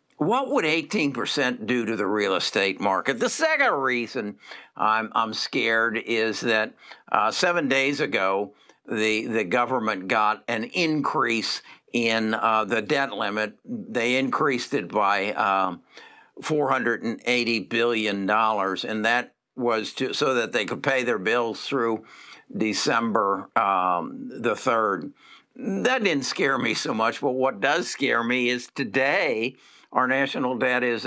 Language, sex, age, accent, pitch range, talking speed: English, male, 60-79, American, 110-135 Hz, 150 wpm